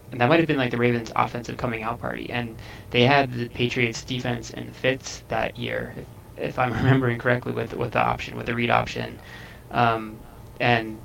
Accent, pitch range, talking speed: American, 115-130 Hz, 195 wpm